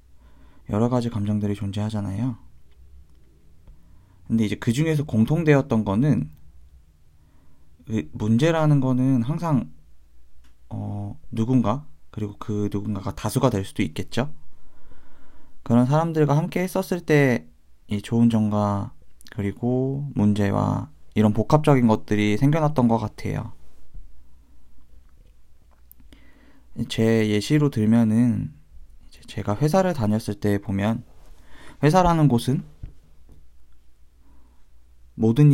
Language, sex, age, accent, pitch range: Korean, male, 20-39, native, 75-130 Hz